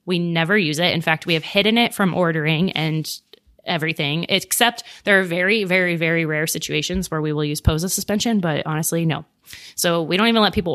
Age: 20-39